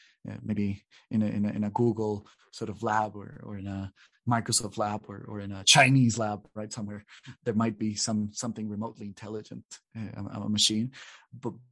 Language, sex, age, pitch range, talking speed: English, male, 30-49, 110-130 Hz, 200 wpm